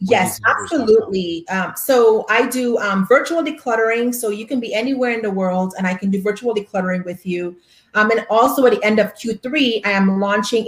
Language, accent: English, American